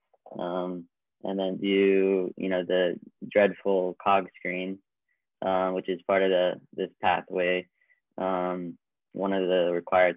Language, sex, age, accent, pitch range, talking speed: English, male, 20-39, American, 90-100 Hz, 135 wpm